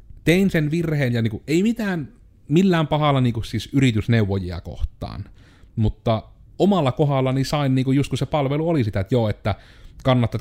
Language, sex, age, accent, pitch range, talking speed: Finnish, male, 30-49, native, 100-130 Hz, 160 wpm